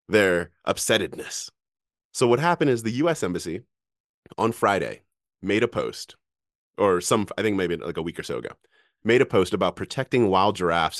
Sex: male